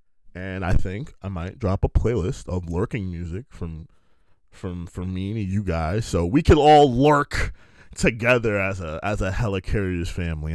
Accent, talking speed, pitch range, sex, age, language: American, 170 wpm, 95-135 Hz, male, 20-39, English